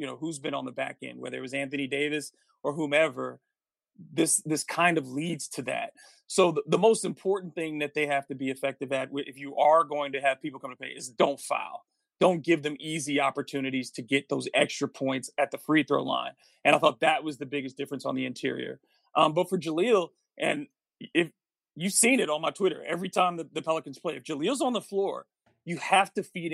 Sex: male